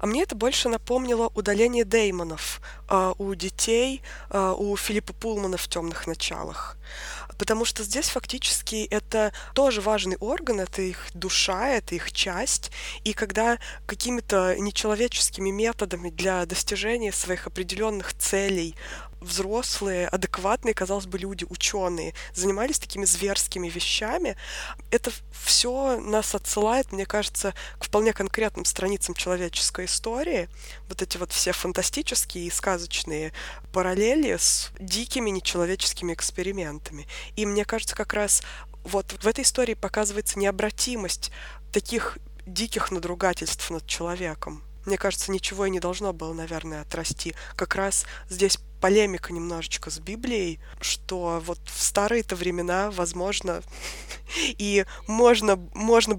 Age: 20-39